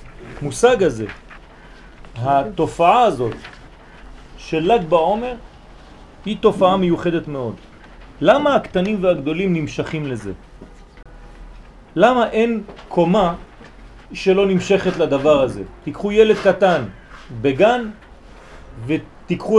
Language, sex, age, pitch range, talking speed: French, male, 40-59, 155-220 Hz, 85 wpm